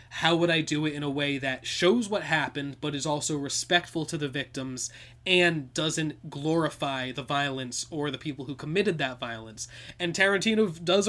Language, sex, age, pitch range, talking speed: English, male, 20-39, 130-170 Hz, 185 wpm